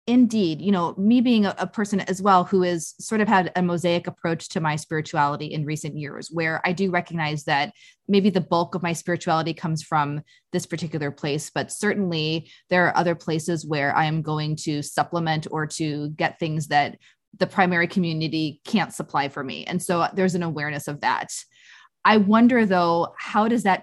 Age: 20-39